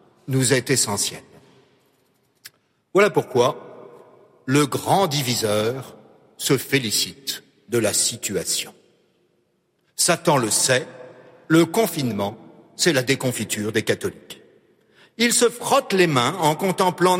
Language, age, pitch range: French, 60-79, 135-185 Hz